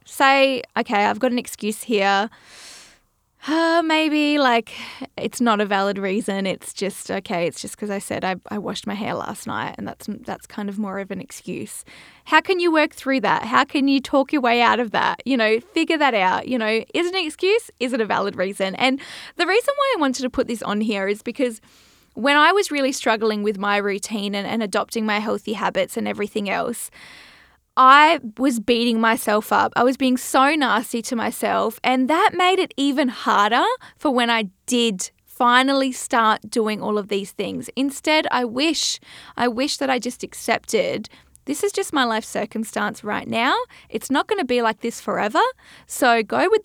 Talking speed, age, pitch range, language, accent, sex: 200 wpm, 10-29, 215-280 Hz, English, Australian, female